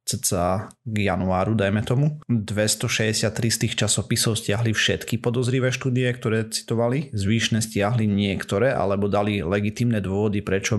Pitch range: 105-120 Hz